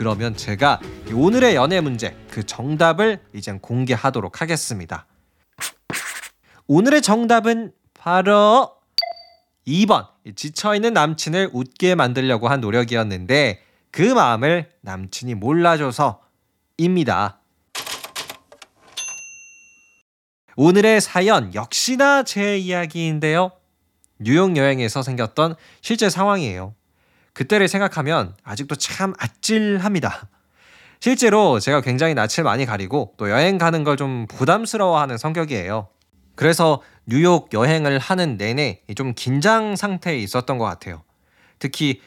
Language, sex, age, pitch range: Korean, male, 20-39, 110-185 Hz